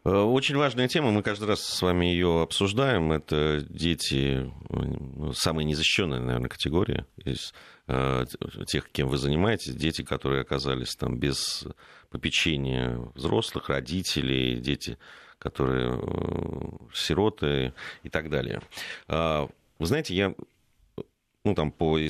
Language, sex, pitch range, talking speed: Russian, male, 70-95 Hz, 115 wpm